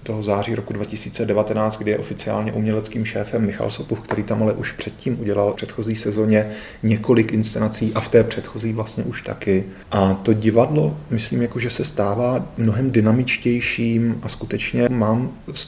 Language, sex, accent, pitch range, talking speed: Czech, male, native, 105-125 Hz, 160 wpm